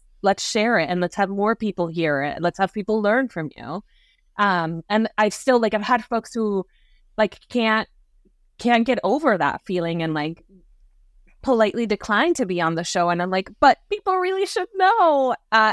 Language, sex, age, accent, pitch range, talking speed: English, female, 20-39, American, 180-230 Hz, 190 wpm